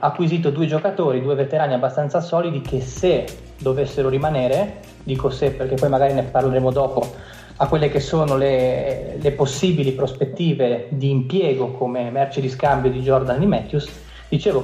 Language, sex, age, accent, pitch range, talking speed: Italian, male, 20-39, native, 130-145 Hz, 155 wpm